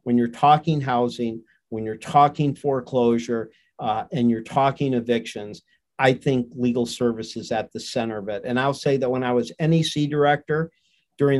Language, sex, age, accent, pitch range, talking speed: English, male, 50-69, American, 120-135 Hz, 175 wpm